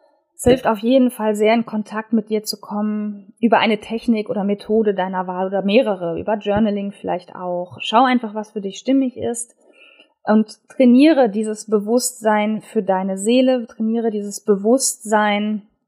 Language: German